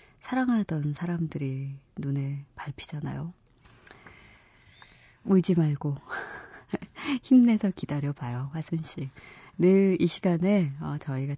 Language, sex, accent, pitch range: Korean, female, native, 145-200 Hz